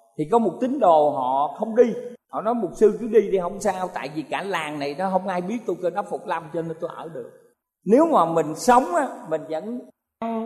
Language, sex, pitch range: Thai, male, 160-240 Hz